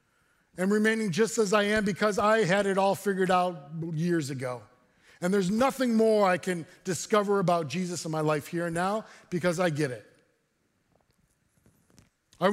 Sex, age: male, 40-59